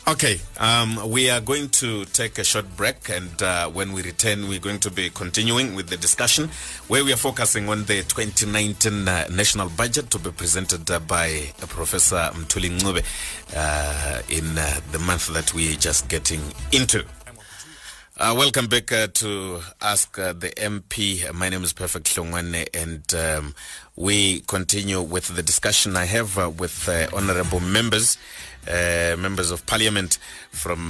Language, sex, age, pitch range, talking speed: English, male, 30-49, 80-105 Hz, 165 wpm